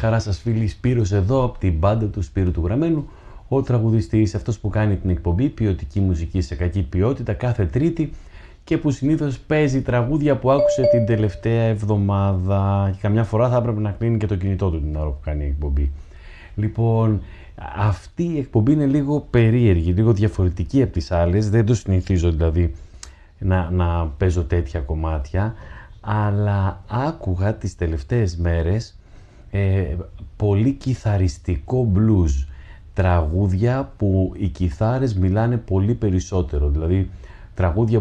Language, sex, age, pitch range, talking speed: Greek, male, 30-49, 90-115 Hz, 145 wpm